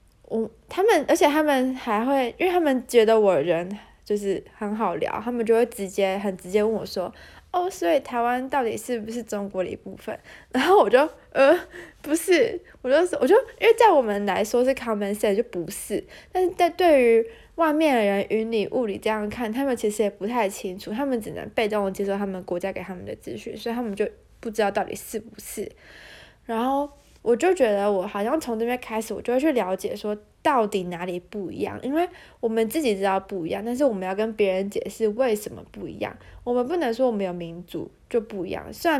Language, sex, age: Chinese, female, 20-39